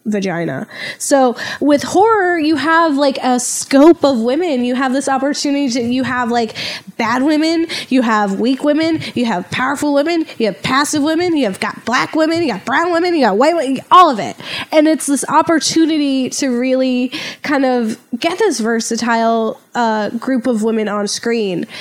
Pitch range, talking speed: 225-280 Hz, 185 wpm